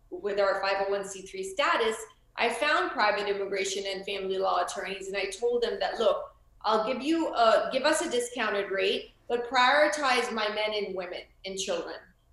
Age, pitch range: 30-49, 195-235 Hz